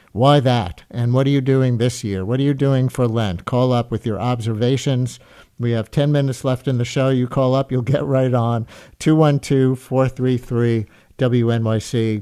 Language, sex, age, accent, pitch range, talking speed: English, male, 50-69, American, 120-140 Hz, 175 wpm